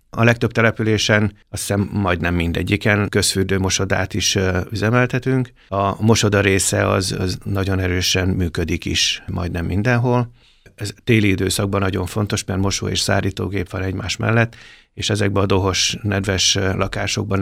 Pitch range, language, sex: 95-105 Hz, Hungarian, male